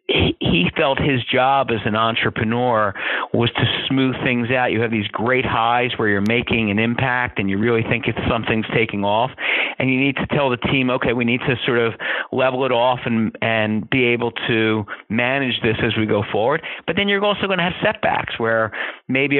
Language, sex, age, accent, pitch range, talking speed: English, male, 40-59, American, 110-130 Hz, 205 wpm